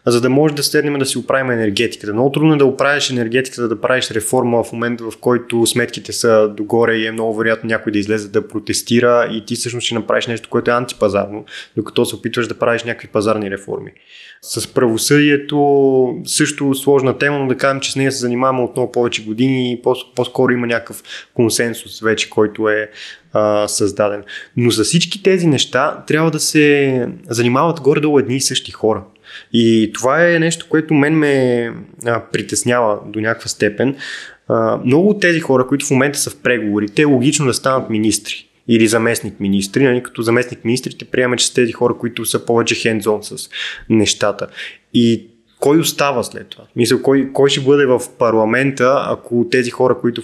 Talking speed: 185 wpm